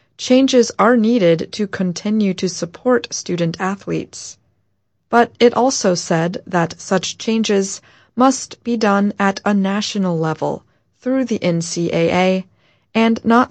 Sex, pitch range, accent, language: female, 165-210 Hz, American, Chinese